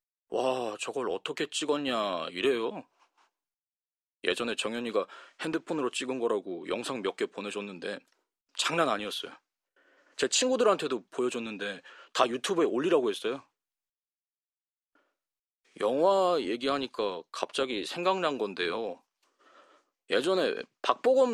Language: Korean